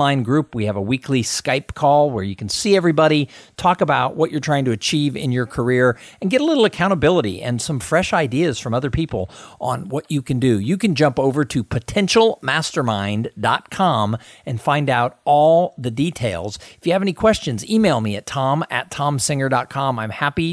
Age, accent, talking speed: 50-69, American, 185 wpm